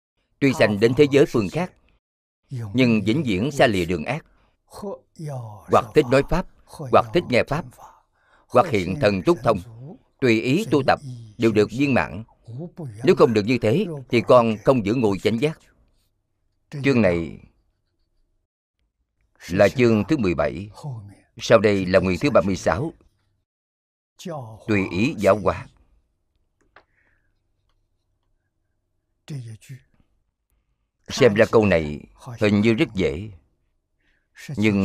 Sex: male